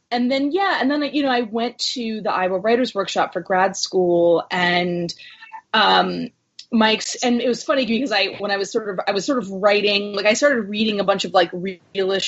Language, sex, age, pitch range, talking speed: English, female, 20-39, 180-230 Hz, 220 wpm